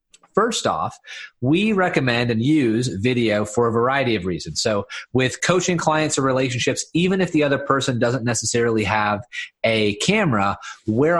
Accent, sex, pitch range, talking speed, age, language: American, male, 115-140 Hz, 155 wpm, 30-49, English